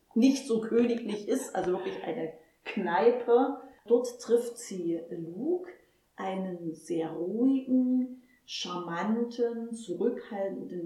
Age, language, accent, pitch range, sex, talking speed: 30-49, German, German, 205-245 Hz, female, 95 wpm